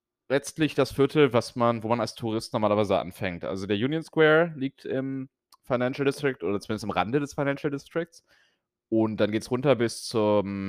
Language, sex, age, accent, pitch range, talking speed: German, male, 30-49, German, 105-145 Hz, 185 wpm